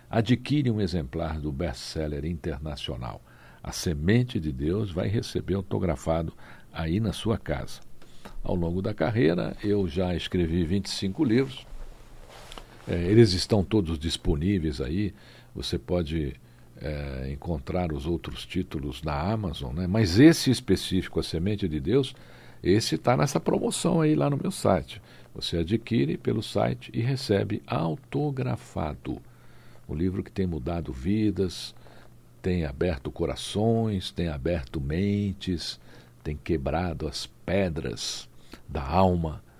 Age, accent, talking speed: 60-79, Brazilian, 125 wpm